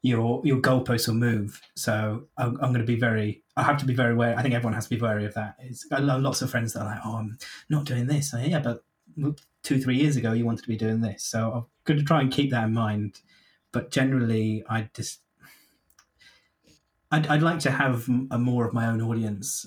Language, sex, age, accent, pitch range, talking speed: English, male, 30-49, British, 115-135 Hz, 225 wpm